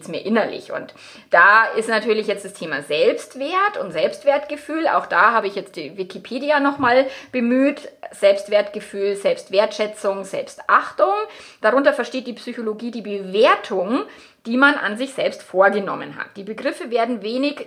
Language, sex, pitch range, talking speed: German, female, 205-275 Hz, 140 wpm